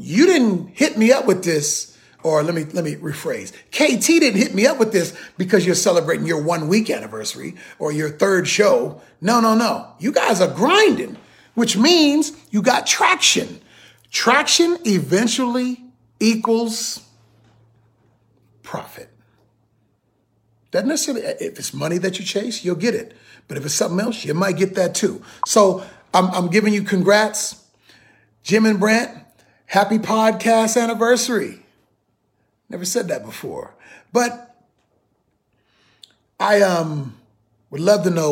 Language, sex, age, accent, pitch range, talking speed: English, male, 40-59, American, 155-230 Hz, 140 wpm